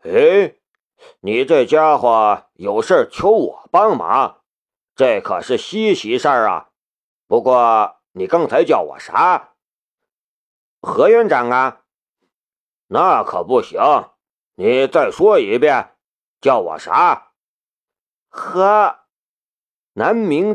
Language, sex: Chinese, male